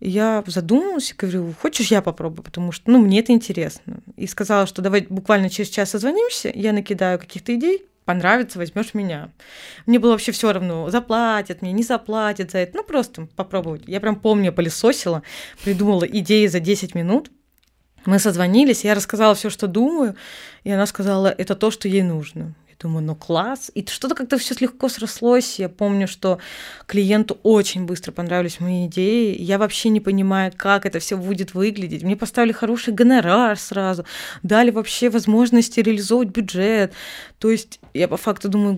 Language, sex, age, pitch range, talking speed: Russian, female, 20-39, 190-230 Hz, 170 wpm